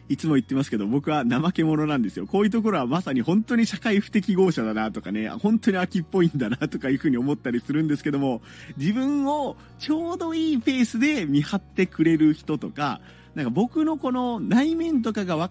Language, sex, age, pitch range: Japanese, male, 40-59, 130-205 Hz